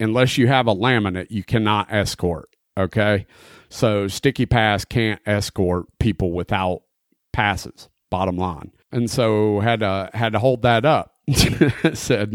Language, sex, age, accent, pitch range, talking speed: English, male, 40-59, American, 95-120 Hz, 140 wpm